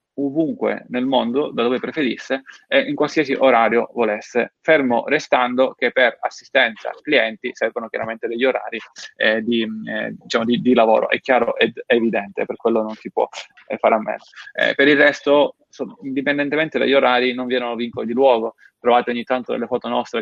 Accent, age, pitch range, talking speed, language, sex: native, 20-39, 120-145 Hz, 185 wpm, Italian, male